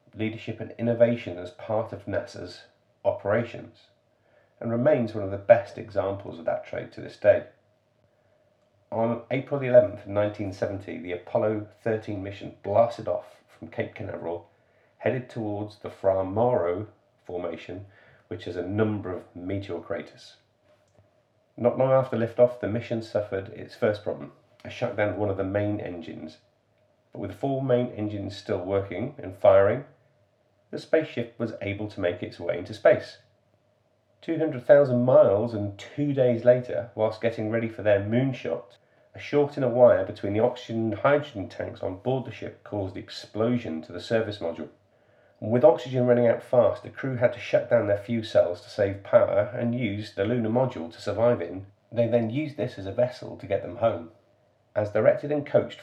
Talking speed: 170 wpm